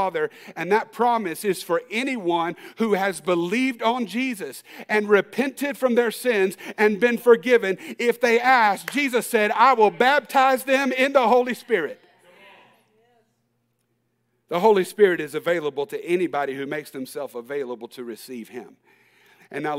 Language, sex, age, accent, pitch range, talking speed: English, male, 50-69, American, 170-225 Hz, 145 wpm